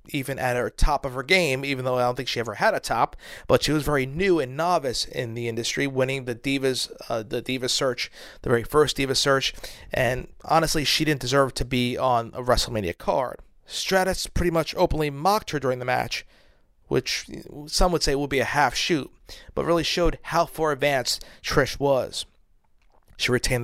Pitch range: 130-160 Hz